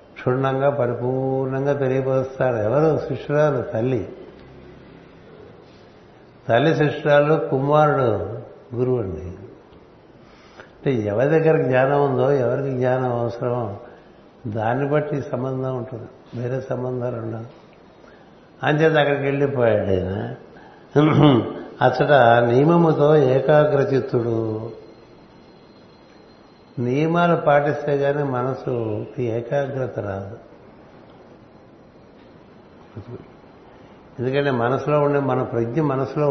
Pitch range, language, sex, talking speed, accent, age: 120-145 Hz, Telugu, male, 75 wpm, native, 60-79